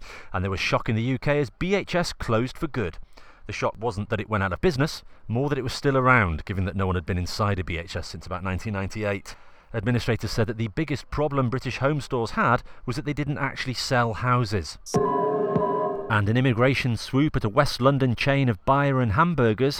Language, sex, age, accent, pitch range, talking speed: English, male, 30-49, British, 105-145 Hz, 205 wpm